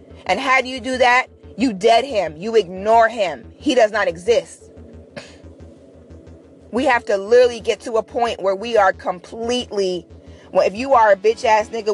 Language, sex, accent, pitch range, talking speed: English, female, American, 200-270 Hz, 180 wpm